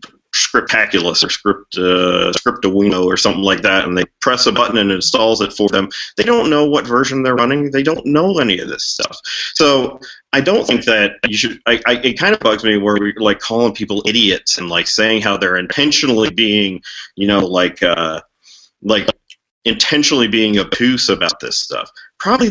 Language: English